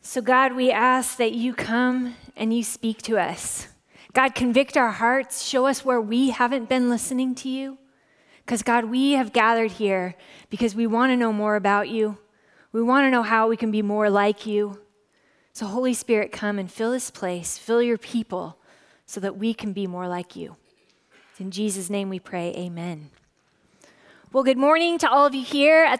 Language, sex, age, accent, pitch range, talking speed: English, female, 20-39, American, 220-280 Hz, 195 wpm